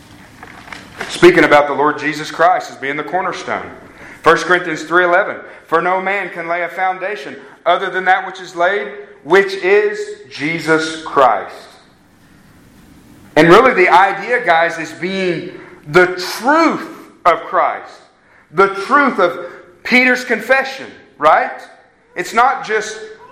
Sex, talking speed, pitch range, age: male, 130 wpm, 180-250 Hz, 40-59